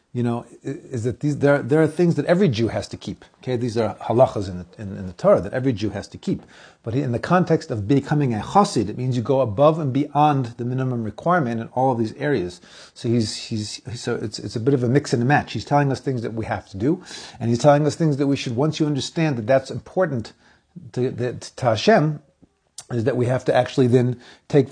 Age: 40-59